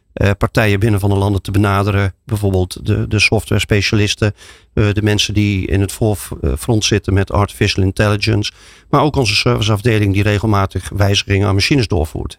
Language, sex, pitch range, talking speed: Dutch, male, 100-115 Hz, 155 wpm